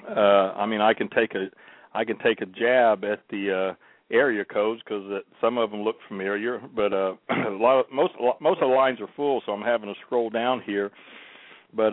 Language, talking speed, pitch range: English, 215 wpm, 100-120 Hz